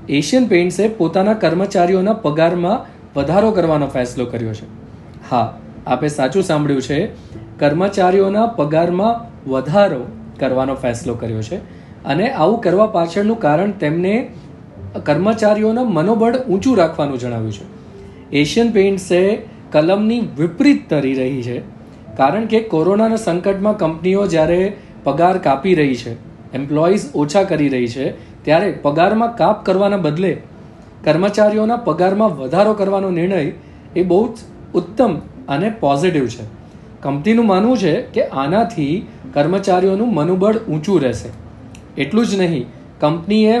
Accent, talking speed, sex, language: native, 80 wpm, male, Gujarati